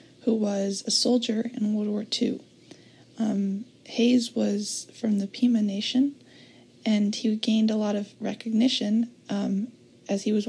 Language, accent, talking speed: English, American, 150 wpm